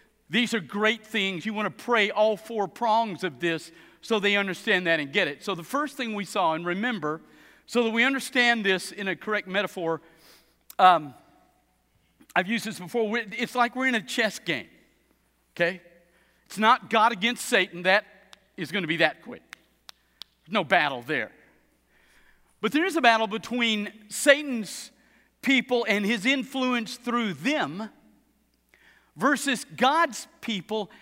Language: Russian